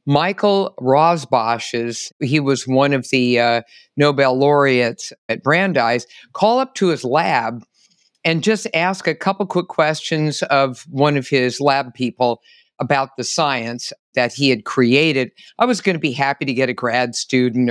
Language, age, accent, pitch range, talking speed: English, 50-69, American, 135-185 Hz, 165 wpm